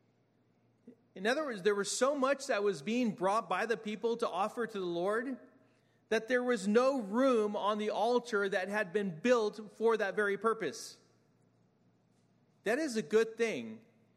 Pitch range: 145-215 Hz